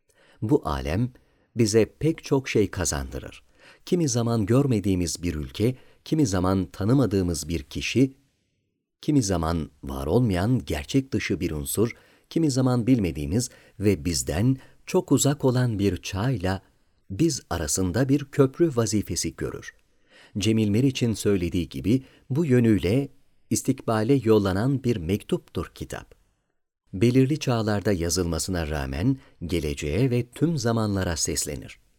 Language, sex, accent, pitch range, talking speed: Turkish, male, native, 95-130 Hz, 115 wpm